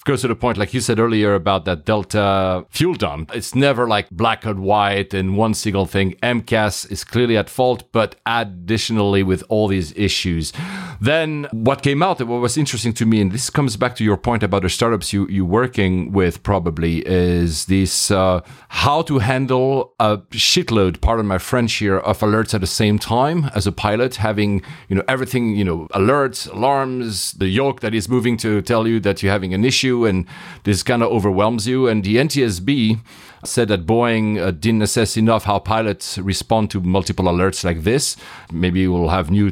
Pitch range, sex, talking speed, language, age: 95-120 Hz, male, 195 wpm, English, 40-59